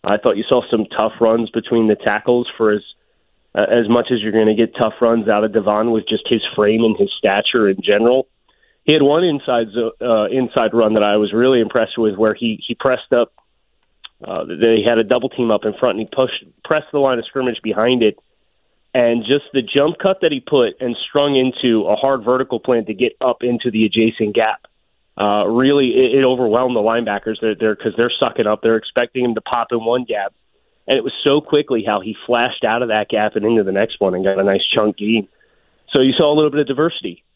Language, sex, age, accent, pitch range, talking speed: English, male, 30-49, American, 110-130 Hz, 230 wpm